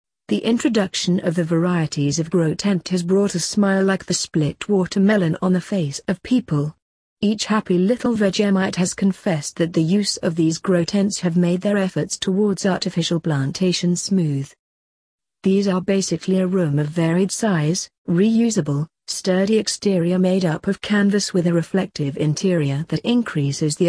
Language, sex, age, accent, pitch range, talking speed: English, female, 40-59, British, 165-195 Hz, 160 wpm